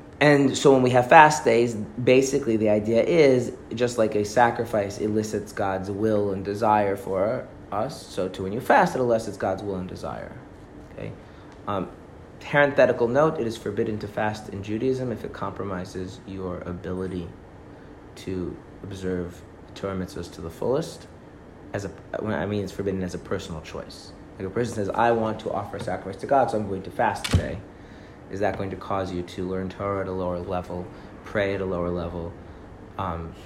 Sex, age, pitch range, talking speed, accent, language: male, 30-49, 90-110 Hz, 185 wpm, American, English